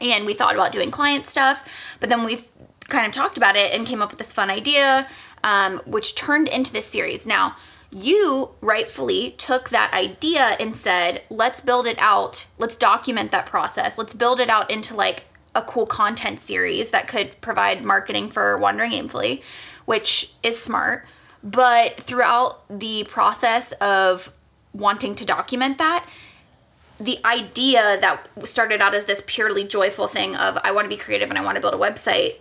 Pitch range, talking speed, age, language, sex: 200-250 Hz, 180 wpm, 20-39, English, female